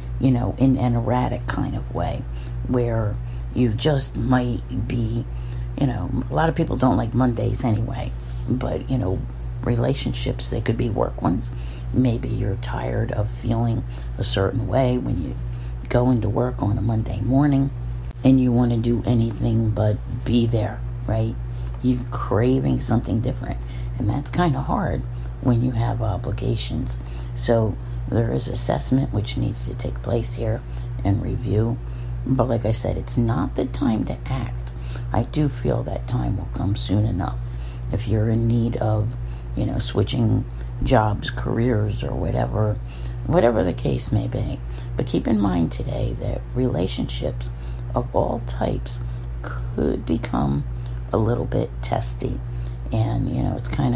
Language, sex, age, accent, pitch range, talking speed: English, female, 50-69, American, 95-125 Hz, 155 wpm